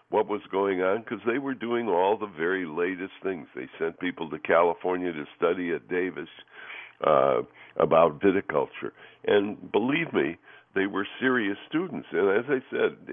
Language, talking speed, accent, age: English, 165 wpm, American, 60-79